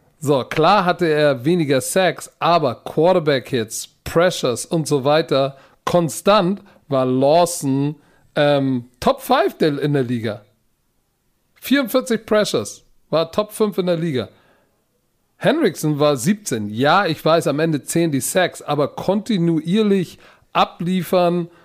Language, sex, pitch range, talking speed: German, male, 145-180 Hz, 115 wpm